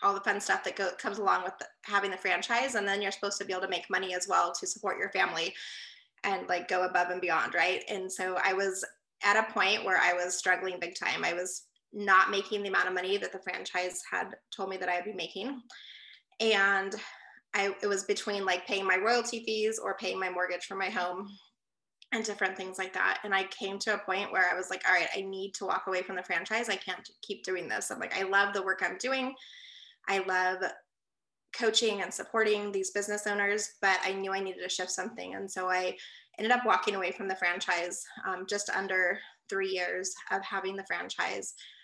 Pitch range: 185-205 Hz